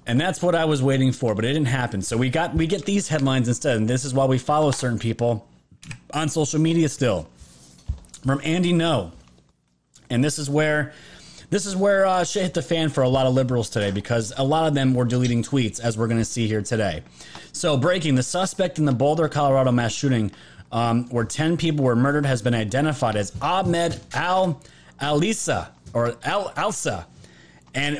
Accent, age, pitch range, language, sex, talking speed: American, 30-49, 120-155 Hz, English, male, 200 wpm